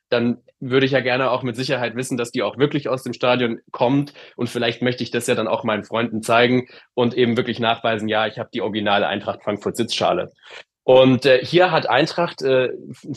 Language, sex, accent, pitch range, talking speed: English, male, German, 120-145 Hz, 210 wpm